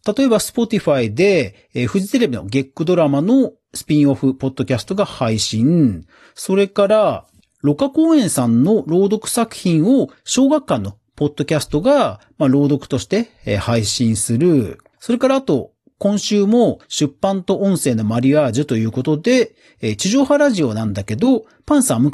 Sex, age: male, 40-59